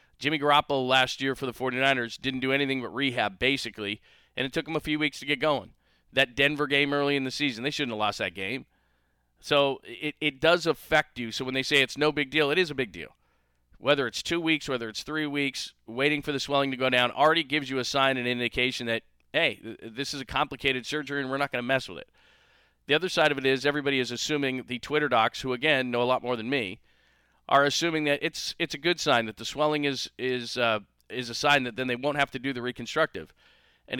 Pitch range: 120-145 Hz